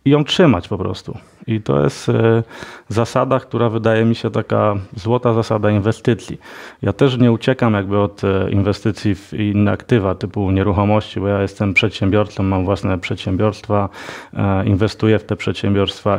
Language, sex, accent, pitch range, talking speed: Polish, male, native, 100-115 Hz, 150 wpm